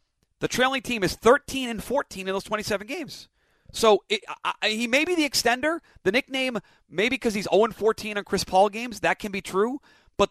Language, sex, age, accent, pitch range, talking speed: English, male, 40-59, American, 160-215 Hz, 210 wpm